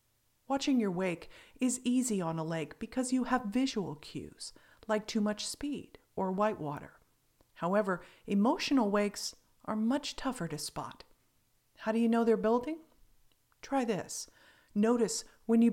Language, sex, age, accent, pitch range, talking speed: English, female, 40-59, American, 180-235 Hz, 150 wpm